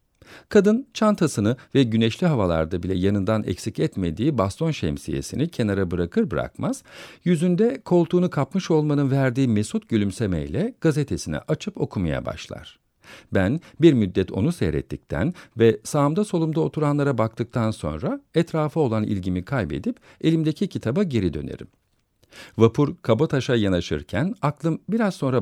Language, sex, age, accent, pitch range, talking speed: Turkish, male, 50-69, native, 95-155 Hz, 120 wpm